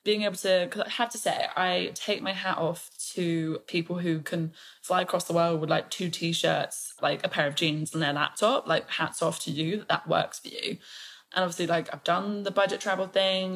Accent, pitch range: British, 165-190 Hz